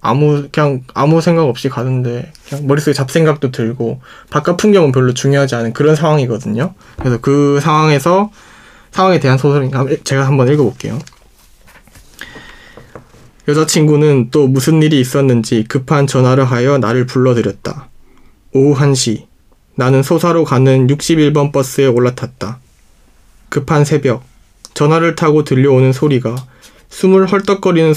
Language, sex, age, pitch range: Korean, male, 20-39, 125-155 Hz